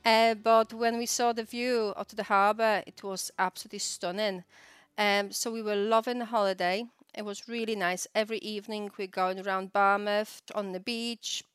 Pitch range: 200-240 Hz